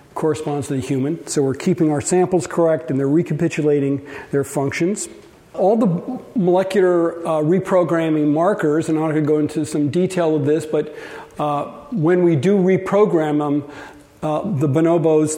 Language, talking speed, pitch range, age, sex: English, 160 wpm, 145-175 Hz, 50-69, male